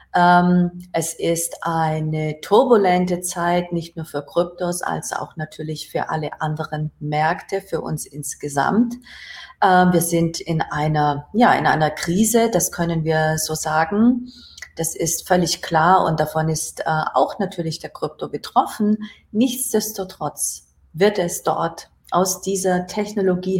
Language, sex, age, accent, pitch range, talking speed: German, female, 40-59, German, 160-195 Hz, 130 wpm